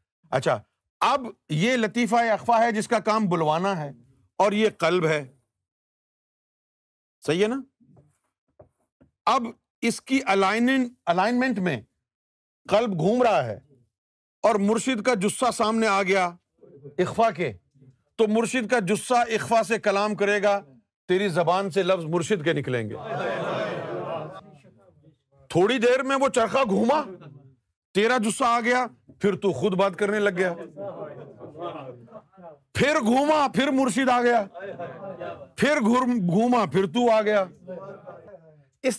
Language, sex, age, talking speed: Urdu, male, 50-69, 125 wpm